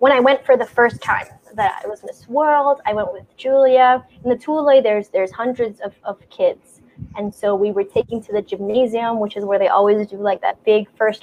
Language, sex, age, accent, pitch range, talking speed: English, female, 10-29, American, 205-240 Hz, 230 wpm